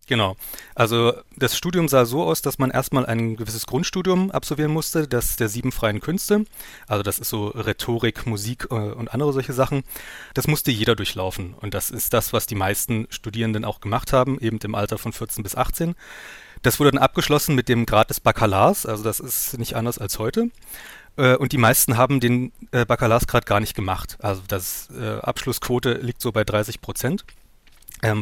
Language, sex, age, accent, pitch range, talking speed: German, male, 30-49, German, 110-140 Hz, 185 wpm